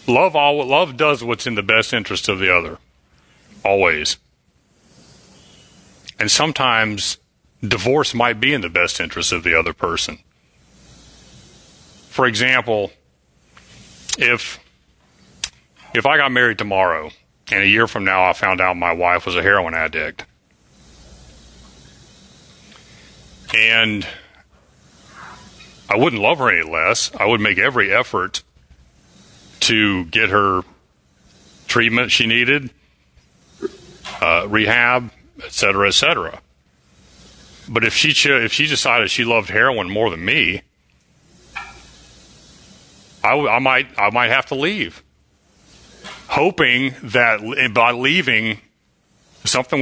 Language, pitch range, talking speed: English, 80-130 Hz, 115 wpm